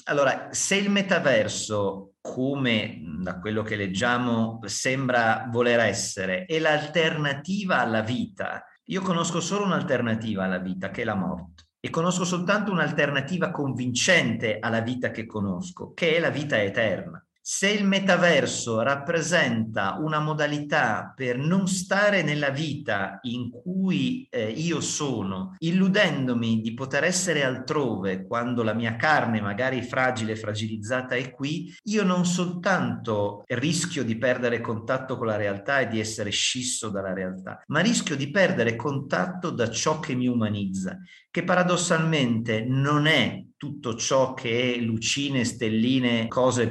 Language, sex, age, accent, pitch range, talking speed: Italian, male, 50-69, native, 110-155 Hz, 140 wpm